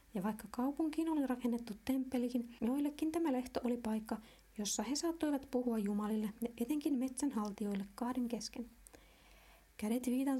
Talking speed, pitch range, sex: 125 wpm, 225-270 Hz, female